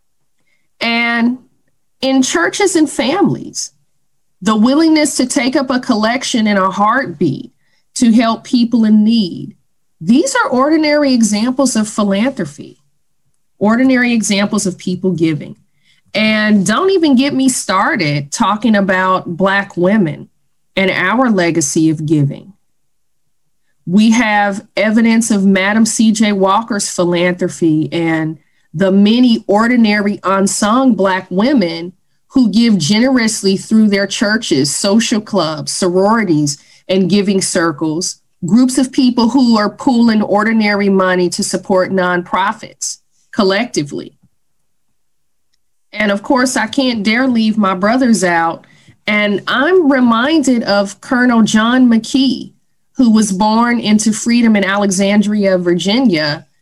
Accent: American